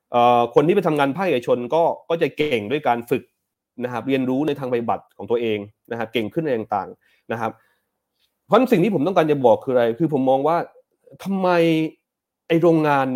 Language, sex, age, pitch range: Thai, male, 30-49, 140-180 Hz